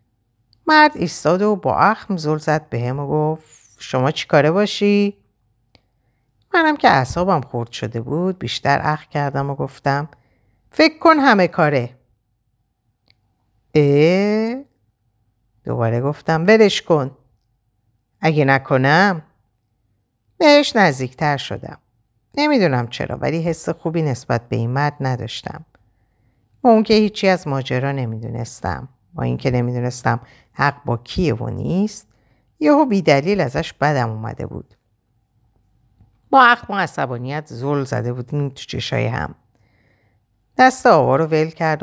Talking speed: 125 wpm